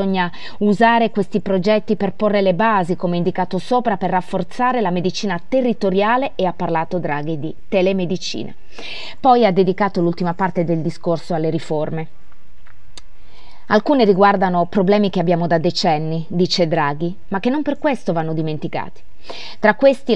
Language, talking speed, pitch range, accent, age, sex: Italian, 150 wpm, 165-210 Hz, native, 30-49, female